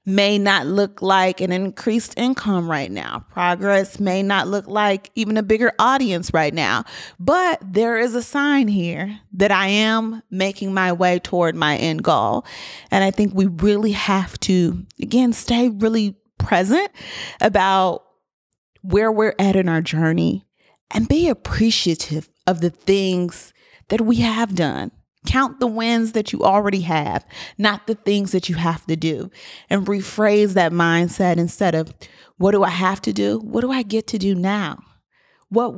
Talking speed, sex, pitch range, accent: 165 wpm, female, 180-220 Hz, American